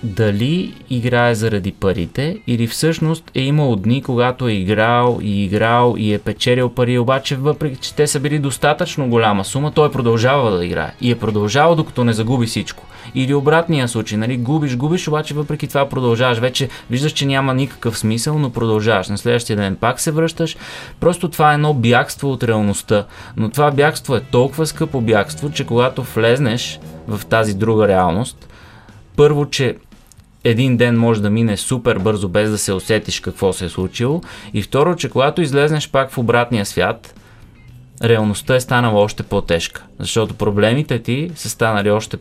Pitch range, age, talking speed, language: 105-135 Hz, 20-39, 170 wpm, Bulgarian